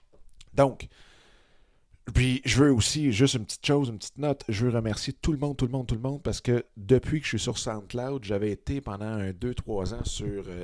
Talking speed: 220 wpm